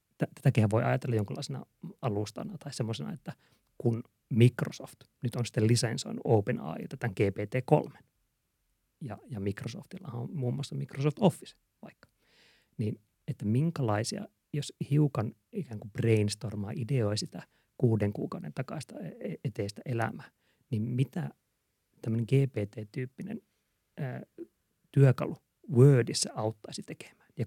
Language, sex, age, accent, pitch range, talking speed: Finnish, male, 30-49, native, 110-140 Hz, 110 wpm